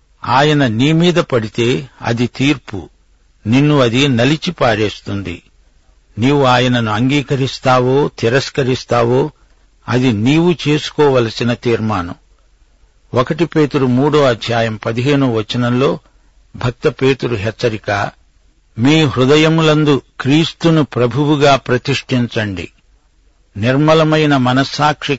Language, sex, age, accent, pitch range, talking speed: Telugu, male, 60-79, native, 110-145 Hz, 80 wpm